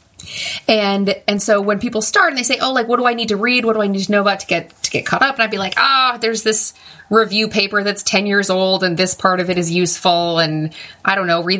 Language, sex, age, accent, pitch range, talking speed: English, female, 30-49, American, 170-215 Hz, 285 wpm